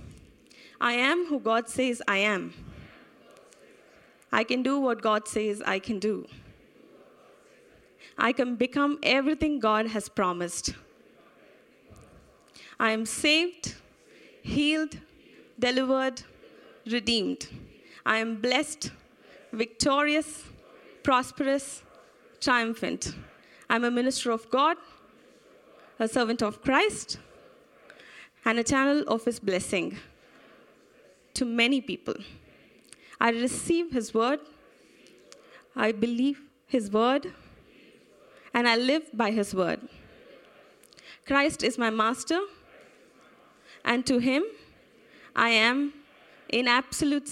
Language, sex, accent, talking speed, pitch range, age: English, female, Indian, 100 wpm, 230-295 Hz, 20-39